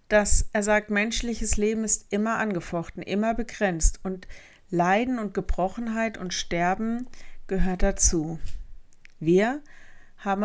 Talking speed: 115 wpm